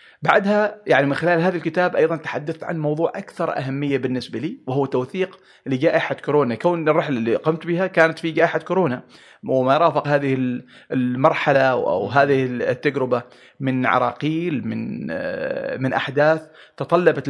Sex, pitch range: male, 130-165 Hz